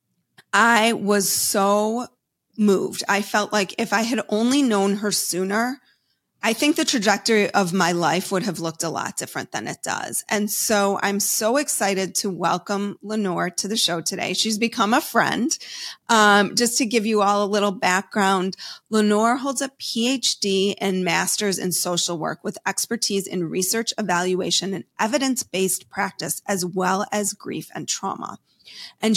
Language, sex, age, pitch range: English, female, 30-49, 190-230 Hz